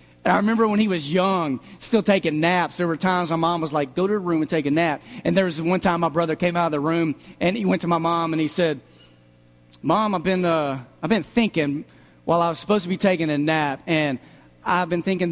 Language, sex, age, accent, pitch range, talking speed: English, male, 40-59, American, 165-230 Hz, 245 wpm